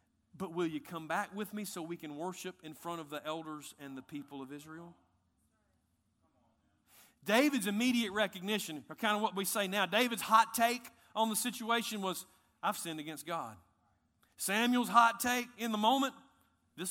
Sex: male